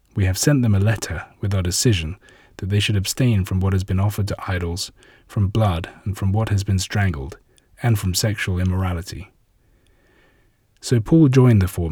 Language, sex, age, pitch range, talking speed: English, male, 30-49, 95-120 Hz, 185 wpm